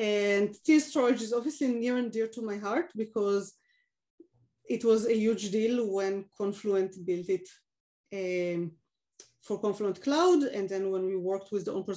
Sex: female